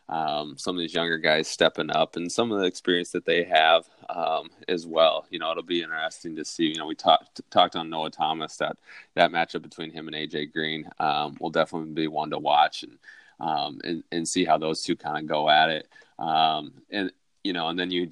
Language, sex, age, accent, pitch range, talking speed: English, male, 20-39, American, 80-85 Hz, 230 wpm